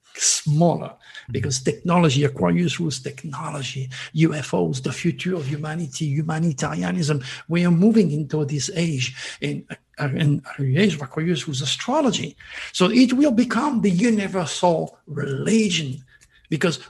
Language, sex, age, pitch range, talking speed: English, male, 60-79, 145-190 Hz, 105 wpm